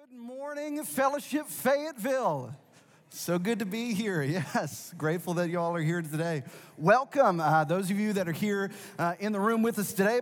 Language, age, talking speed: English, 30-49, 180 wpm